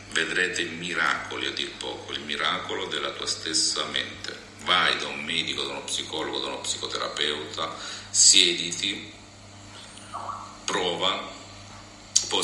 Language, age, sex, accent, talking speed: Italian, 50-69, male, native, 115 wpm